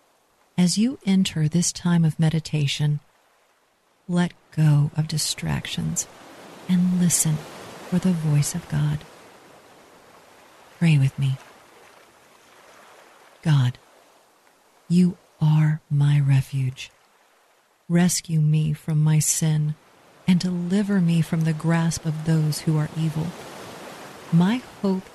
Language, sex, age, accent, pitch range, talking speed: English, female, 50-69, American, 150-180 Hz, 105 wpm